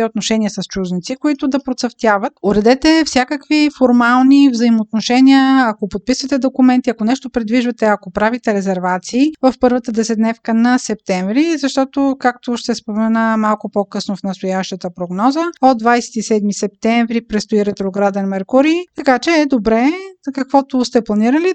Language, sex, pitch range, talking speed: Bulgarian, female, 220-265 Hz, 130 wpm